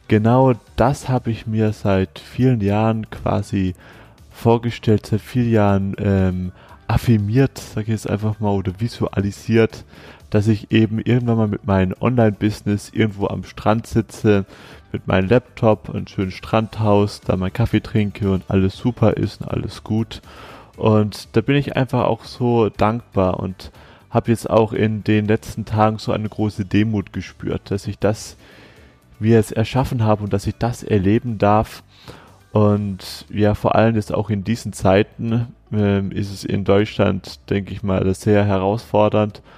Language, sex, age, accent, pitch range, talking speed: German, male, 30-49, German, 100-115 Hz, 160 wpm